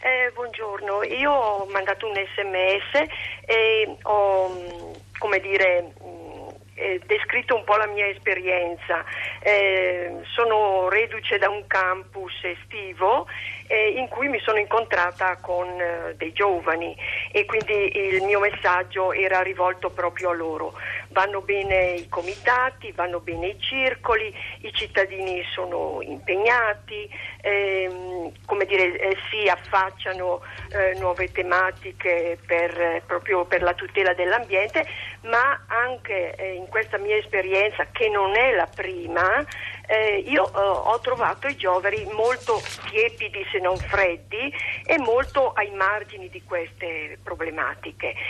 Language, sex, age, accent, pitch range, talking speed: Italian, female, 50-69, native, 180-245 Hz, 130 wpm